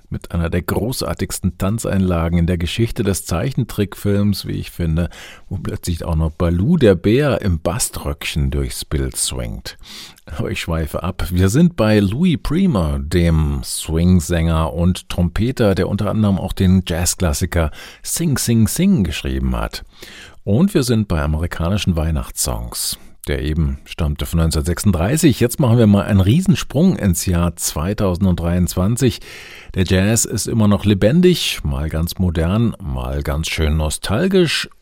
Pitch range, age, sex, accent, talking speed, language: 80-110 Hz, 50-69, male, German, 140 wpm, German